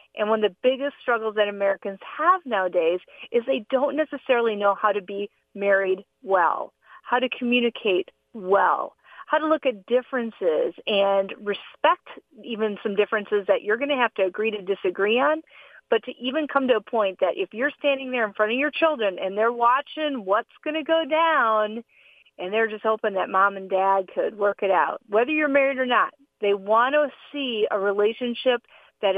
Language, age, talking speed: English, 40-59, 190 wpm